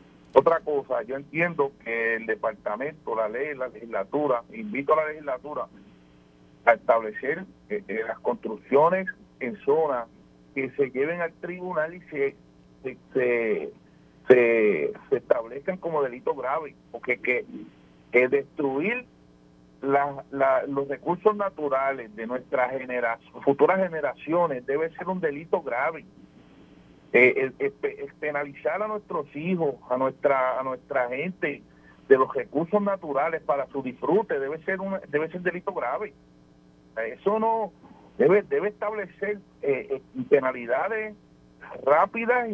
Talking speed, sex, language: 130 wpm, male, Spanish